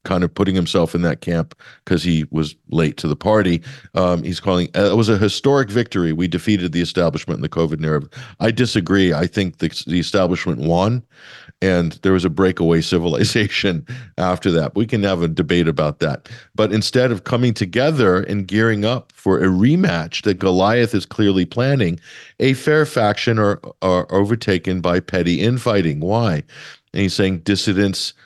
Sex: male